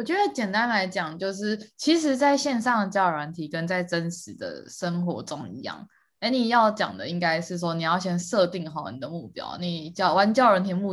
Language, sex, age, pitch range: Chinese, female, 20-39, 165-205 Hz